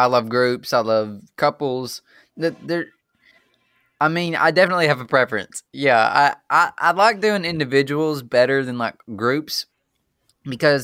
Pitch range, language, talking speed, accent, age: 105-125 Hz, English, 150 wpm, American, 20-39